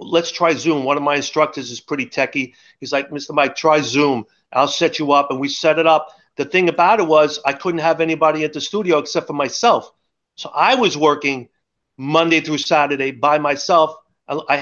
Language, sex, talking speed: English, male, 205 wpm